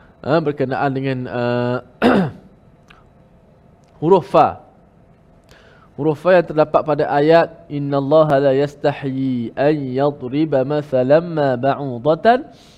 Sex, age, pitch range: male, 20-39, 130-160 Hz